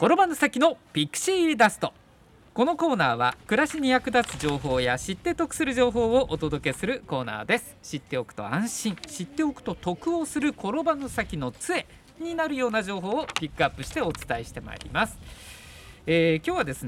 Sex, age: male, 50-69